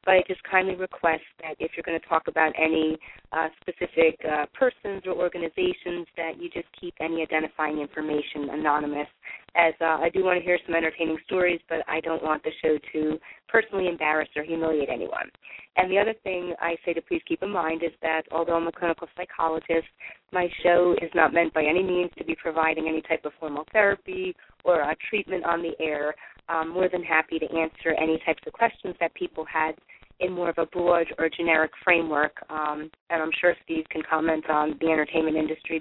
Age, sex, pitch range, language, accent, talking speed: 30-49, female, 155-175 Hz, English, American, 205 wpm